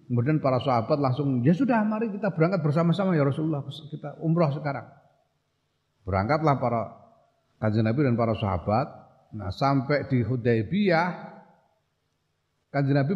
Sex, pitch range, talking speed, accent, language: male, 110-145 Hz, 120 wpm, native, Indonesian